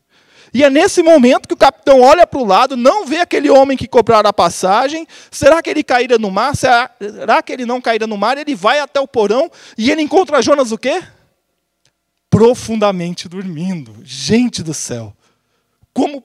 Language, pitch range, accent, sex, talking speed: Portuguese, 200-275 Hz, Brazilian, male, 180 wpm